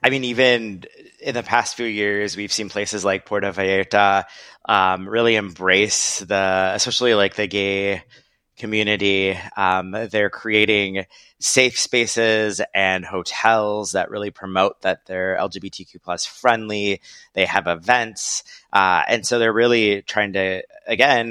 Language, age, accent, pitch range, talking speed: English, 20-39, American, 95-110 Hz, 140 wpm